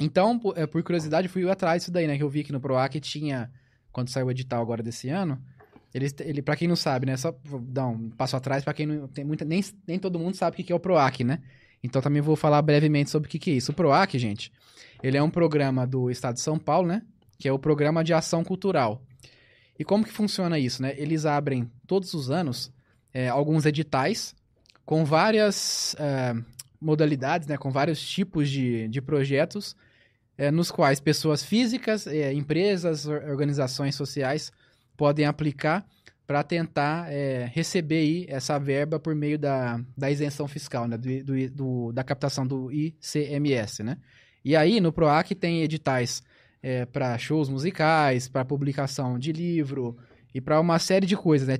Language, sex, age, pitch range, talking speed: Portuguese, male, 20-39, 130-160 Hz, 180 wpm